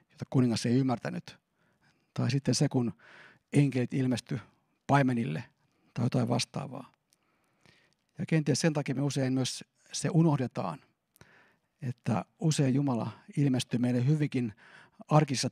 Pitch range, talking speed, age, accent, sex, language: 125-145 Hz, 115 wpm, 50-69, native, male, Finnish